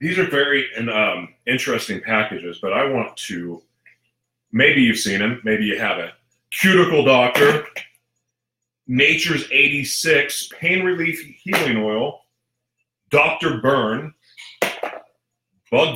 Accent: American